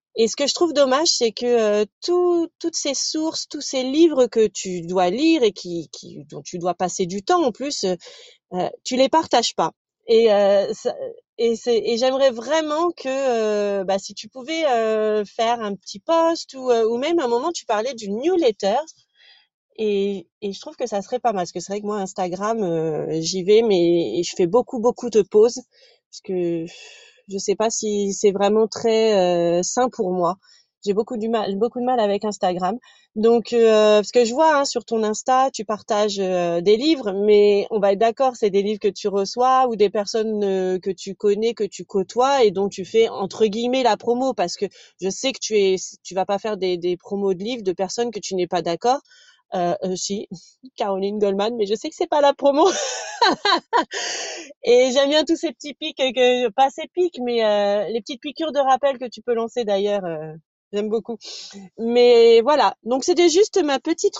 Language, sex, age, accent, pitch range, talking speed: French, female, 30-49, French, 200-270 Hz, 210 wpm